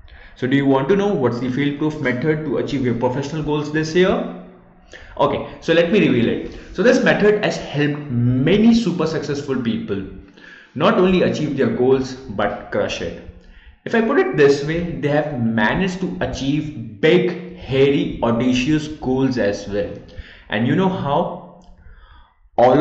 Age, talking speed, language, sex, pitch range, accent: 20-39, 165 wpm, English, male, 115-155 Hz, Indian